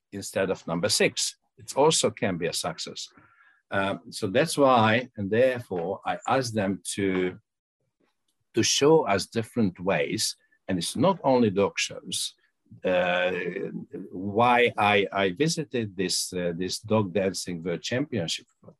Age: 60-79